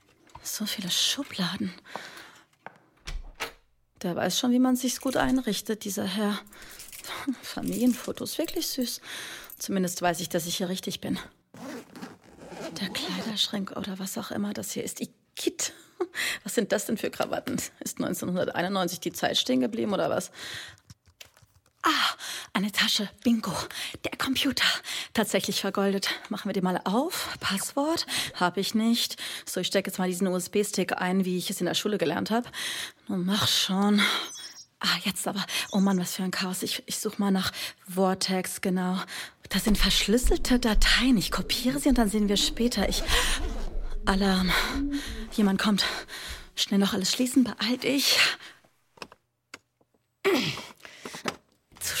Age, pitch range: 30-49, 190-245 Hz